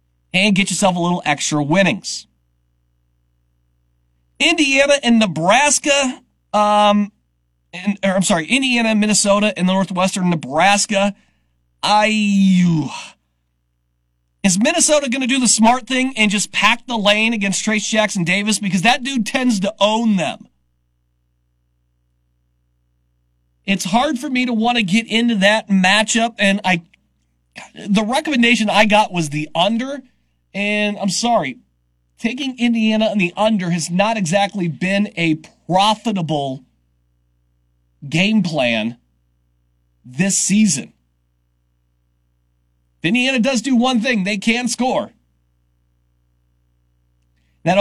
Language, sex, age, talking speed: English, male, 40-59, 120 wpm